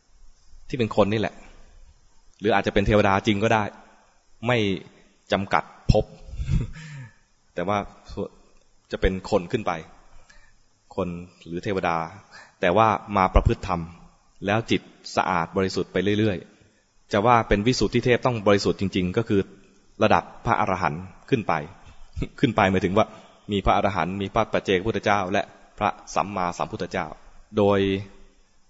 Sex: male